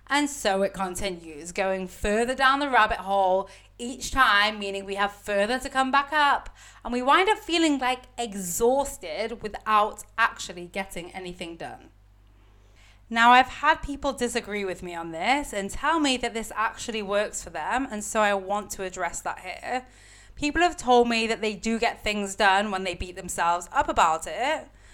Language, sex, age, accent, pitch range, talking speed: English, female, 30-49, British, 195-240 Hz, 180 wpm